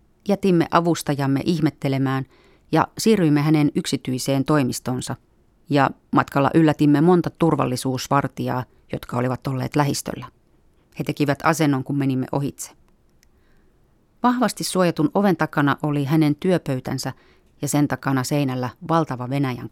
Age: 30-49